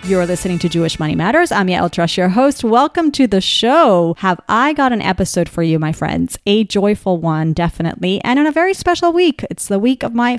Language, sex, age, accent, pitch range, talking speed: English, female, 30-49, American, 195-275 Hz, 230 wpm